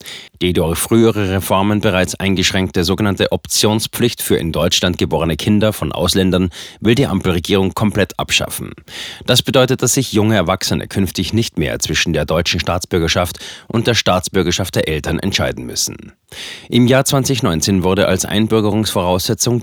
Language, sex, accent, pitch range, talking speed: German, male, German, 90-115 Hz, 140 wpm